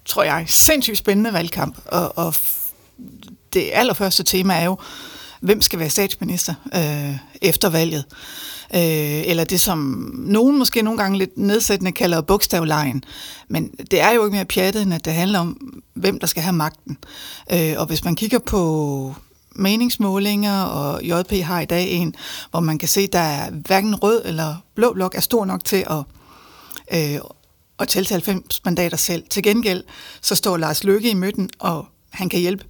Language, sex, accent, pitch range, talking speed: Danish, female, native, 160-205 Hz, 175 wpm